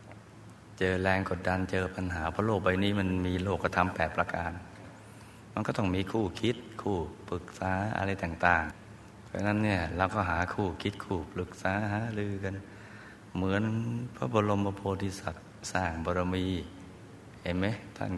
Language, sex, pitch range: Thai, male, 90-105 Hz